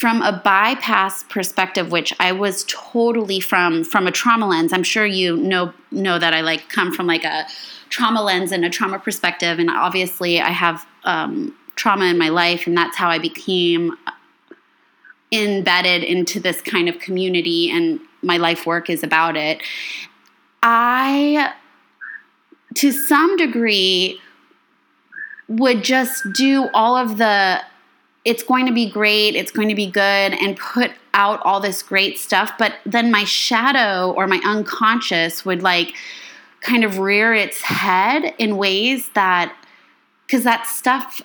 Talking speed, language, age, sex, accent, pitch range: 155 wpm, English, 20-39, female, American, 180-245 Hz